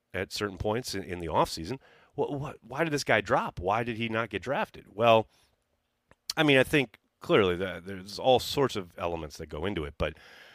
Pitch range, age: 95-135 Hz, 30-49